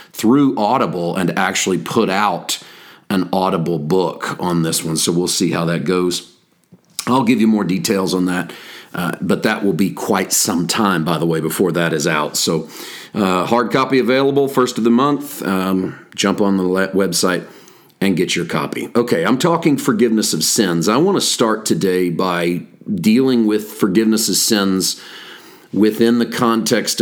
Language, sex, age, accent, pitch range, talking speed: English, male, 40-59, American, 90-110 Hz, 175 wpm